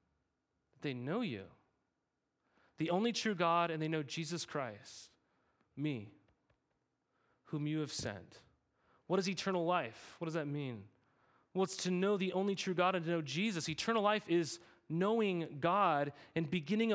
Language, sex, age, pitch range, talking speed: English, male, 30-49, 150-190 Hz, 155 wpm